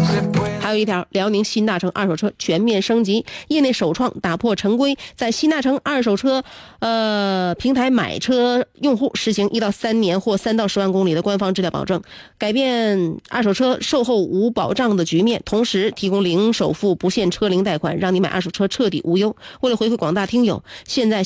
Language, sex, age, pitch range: Chinese, female, 30-49, 185-245 Hz